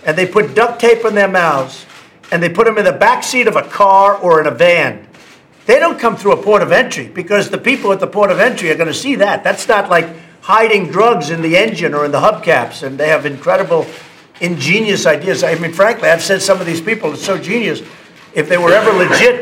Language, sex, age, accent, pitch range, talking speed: English, male, 50-69, American, 180-225 Hz, 240 wpm